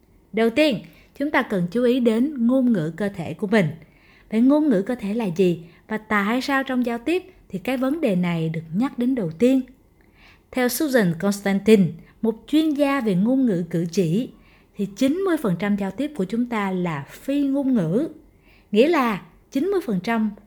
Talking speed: 180 wpm